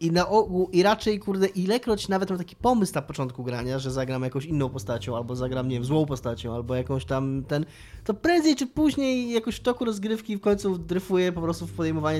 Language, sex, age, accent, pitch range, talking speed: Polish, male, 20-39, native, 135-180 Hz, 215 wpm